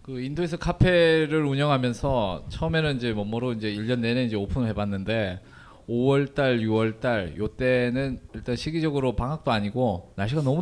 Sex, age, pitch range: male, 20-39, 110-145 Hz